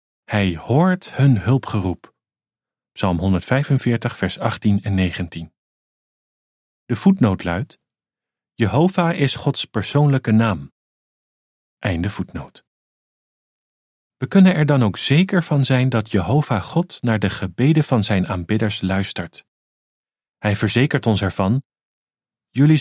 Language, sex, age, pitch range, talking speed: Dutch, male, 40-59, 95-145 Hz, 115 wpm